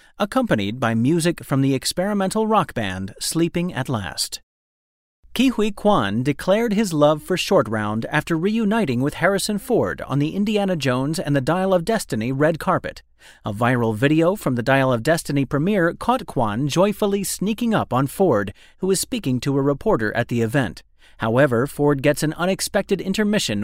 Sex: male